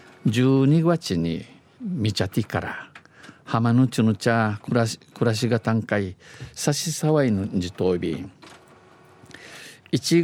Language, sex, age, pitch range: Japanese, male, 50-69, 100-130 Hz